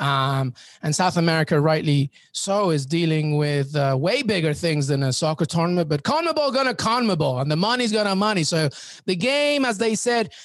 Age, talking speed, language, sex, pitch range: 30-49, 195 wpm, English, male, 150-205 Hz